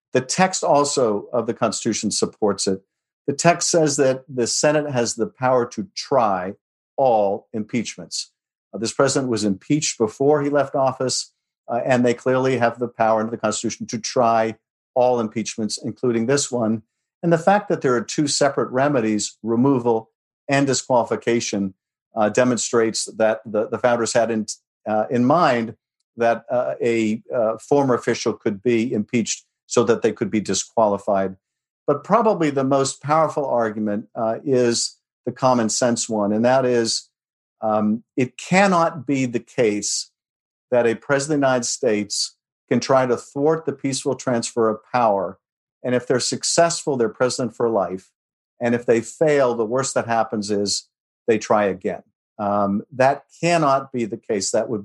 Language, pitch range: English, 110-135 Hz